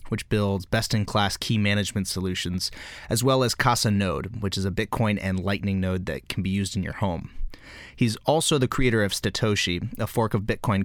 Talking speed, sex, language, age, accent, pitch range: 195 wpm, male, English, 30-49, American, 95-110 Hz